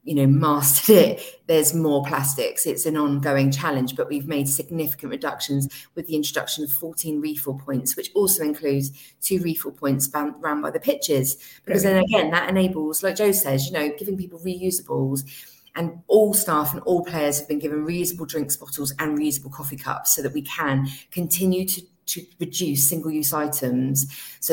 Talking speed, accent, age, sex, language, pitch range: 180 wpm, British, 30-49, female, English, 145-180 Hz